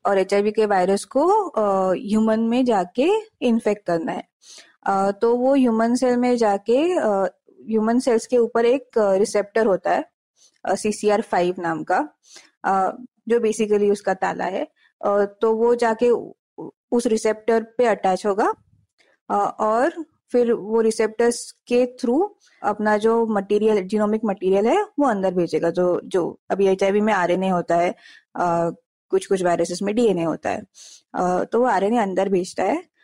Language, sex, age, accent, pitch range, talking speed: Hindi, female, 20-39, native, 200-245 Hz, 160 wpm